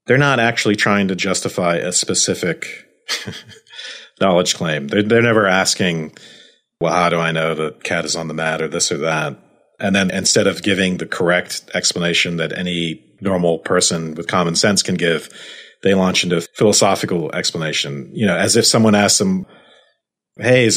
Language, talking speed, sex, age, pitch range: English, 175 wpm, male, 40-59, 95-115 Hz